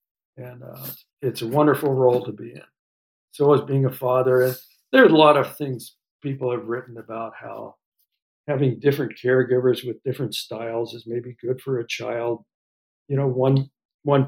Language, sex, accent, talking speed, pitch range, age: English, male, American, 170 wpm, 120-135 Hz, 60-79